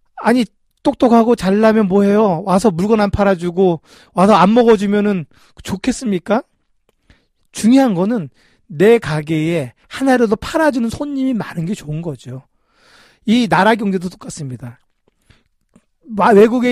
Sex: male